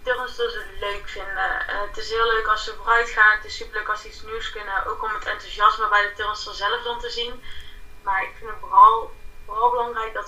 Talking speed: 235 wpm